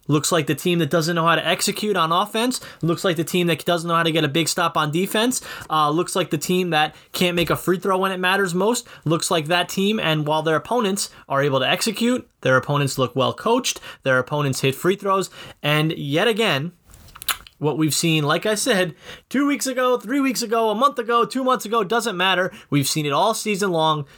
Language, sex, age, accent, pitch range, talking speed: English, male, 20-39, American, 140-190 Hz, 230 wpm